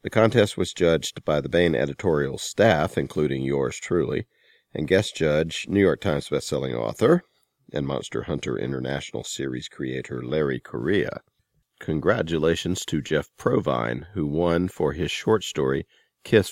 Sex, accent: male, American